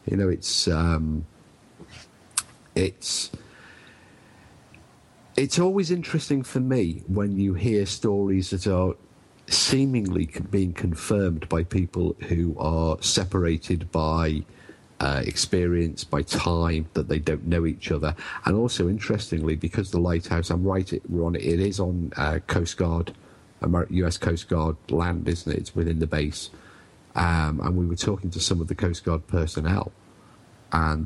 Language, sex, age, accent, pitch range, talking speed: English, male, 50-69, British, 80-100 Hz, 145 wpm